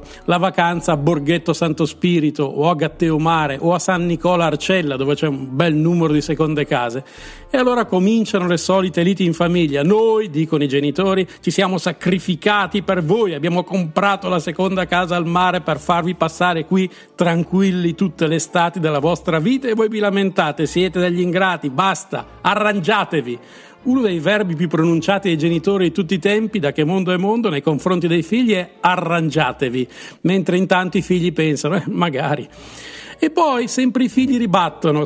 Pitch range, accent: 160-195 Hz, native